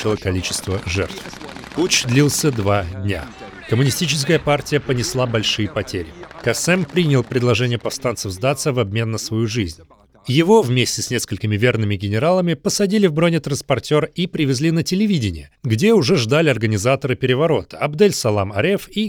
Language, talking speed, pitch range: Russian, 135 wpm, 110-150 Hz